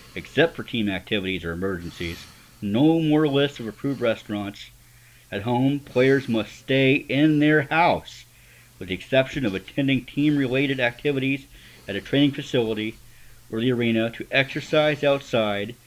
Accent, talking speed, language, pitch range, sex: American, 140 wpm, English, 105-135 Hz, male